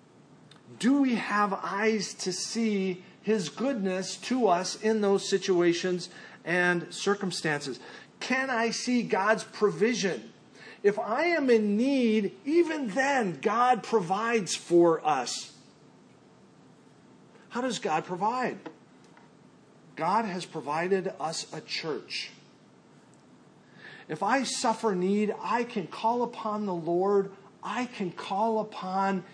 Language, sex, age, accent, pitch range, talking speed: English, male, 40-59, American, 175-220 Hz, 110 wpm